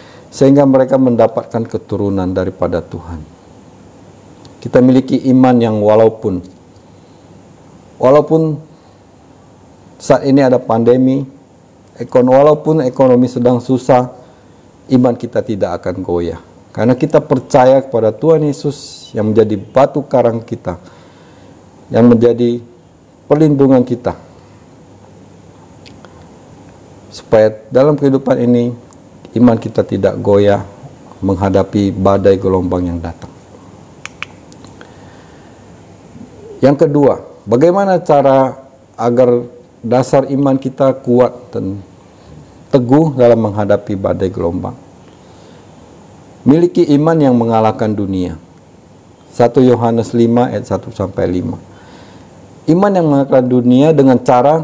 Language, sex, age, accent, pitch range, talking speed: Indonesian, male, 50-69, native, 100-135 Hz, 95 wpm